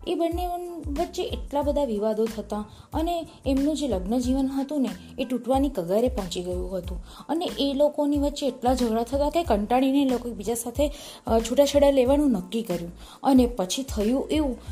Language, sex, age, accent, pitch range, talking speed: Gujarati, female, 20-39, native, 220-280 Hz, 160 wpm